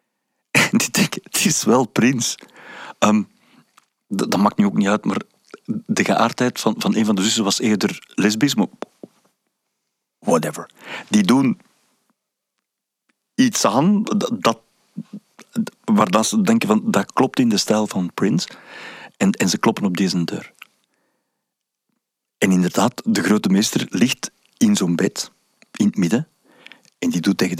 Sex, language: male, Dutch